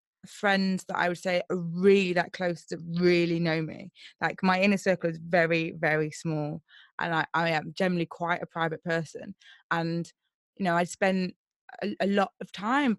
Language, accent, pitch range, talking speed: English, British, 170-215 Hz, 185 wpm